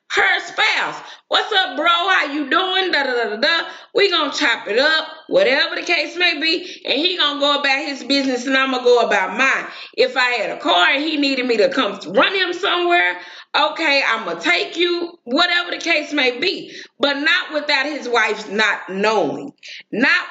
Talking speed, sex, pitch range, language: 200 wpm, female, 245-350 Hz, English